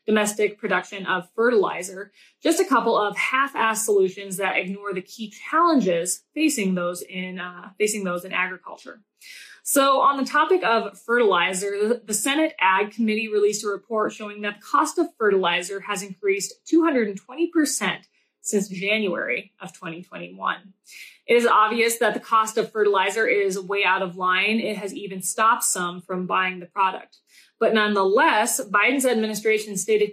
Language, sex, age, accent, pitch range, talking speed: English, female, 20-39, American, 190-230 Hz, 150 wpm